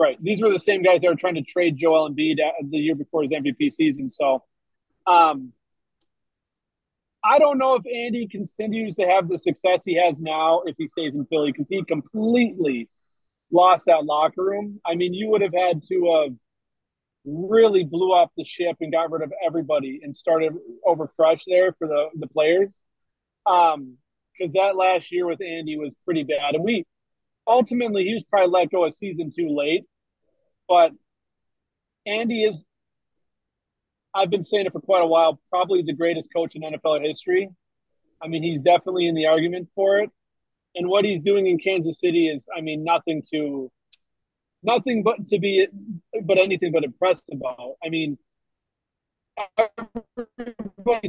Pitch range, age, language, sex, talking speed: 160-200 Hz, 30-49, English, male, 170 wpm